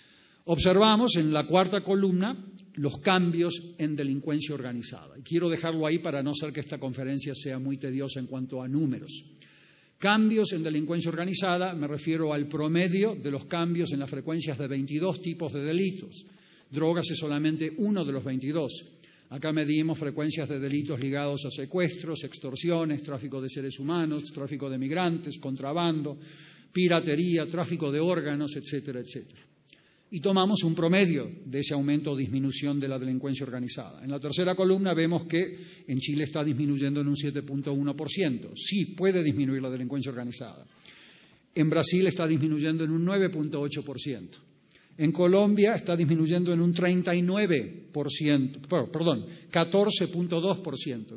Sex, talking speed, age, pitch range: male, 145 wpm, 50-69, 140-175 Hz